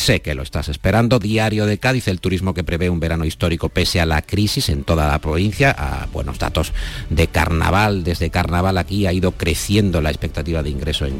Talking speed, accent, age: 210 wpm, Spanish, 50-69